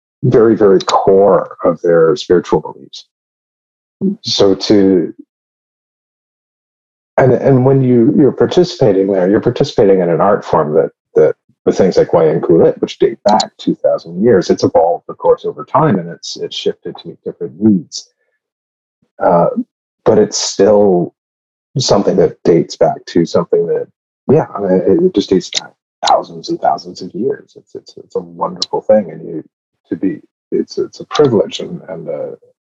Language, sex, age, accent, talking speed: English, male, 40-59, American, 165 wpm